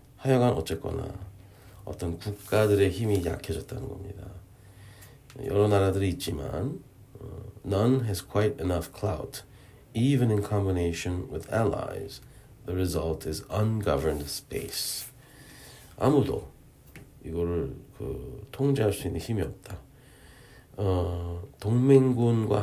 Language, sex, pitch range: Korean, male, 90-125 Hz